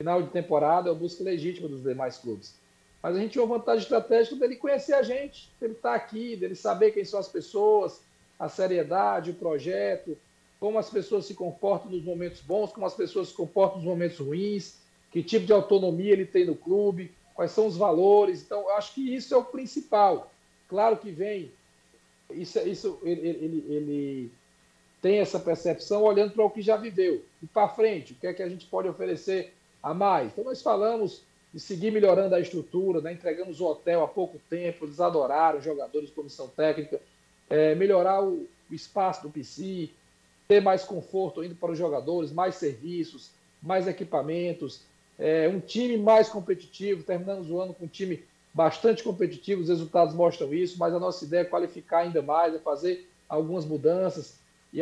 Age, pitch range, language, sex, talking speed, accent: 50-69, 165-210 Hz, Portuguese, male, 185 wpm, Brazilian